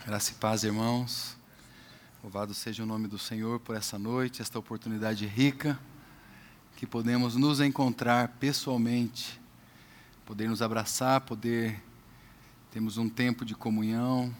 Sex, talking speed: male, 125 wpm